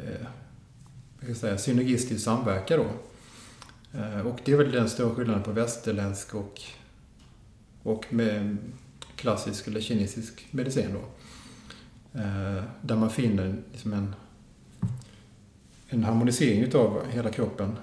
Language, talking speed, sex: Swedish, 110 wpm, male